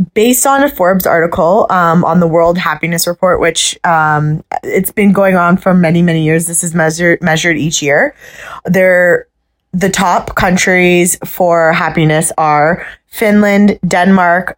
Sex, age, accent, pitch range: female, 20-39, American, 170-205 Hz